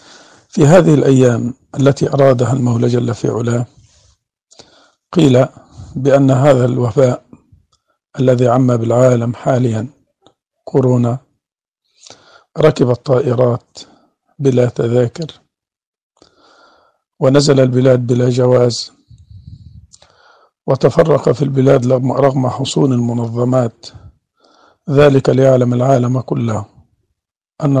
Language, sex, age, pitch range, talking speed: Arabic, male, 50-69, 120-140 Hz, 80 wpm